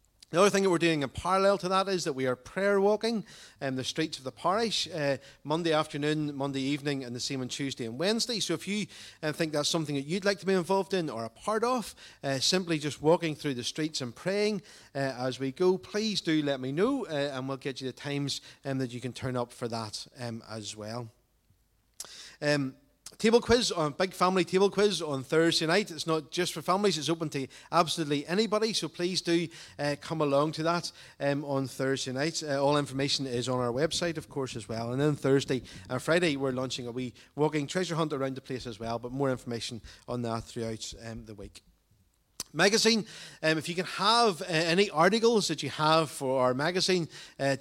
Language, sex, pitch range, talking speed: English, male, 130-170 Hz, 220 wpm